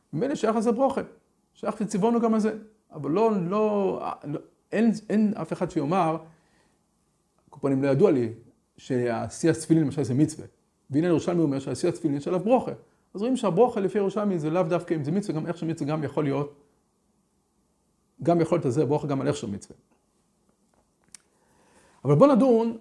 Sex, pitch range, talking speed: male, 135-205 Hz, 135 wpm